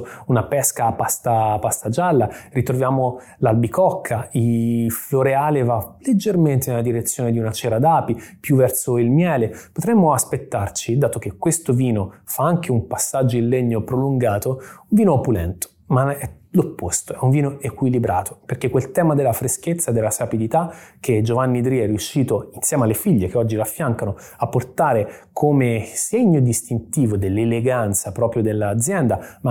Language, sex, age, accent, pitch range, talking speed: Italian, male, 30-49, native, 110-135 Hz, 145 wpm